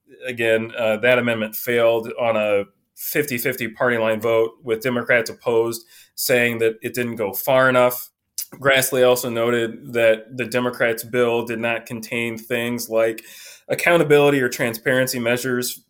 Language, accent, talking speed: English, American, 140 wpm